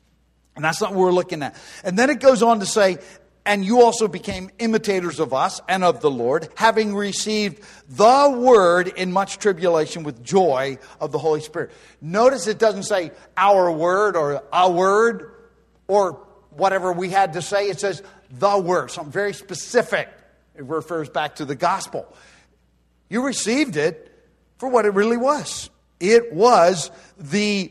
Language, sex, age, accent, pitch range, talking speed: English, male, 50-69, American, 160-210 Hz, 170 wpm